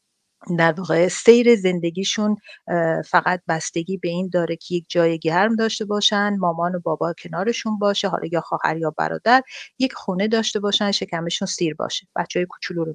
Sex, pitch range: female, 165-220 Hz